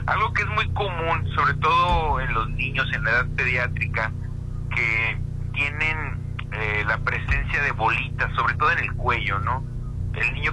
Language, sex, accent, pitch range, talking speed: Spanish, male, Mexican, 105-125 Hz, 165 wpm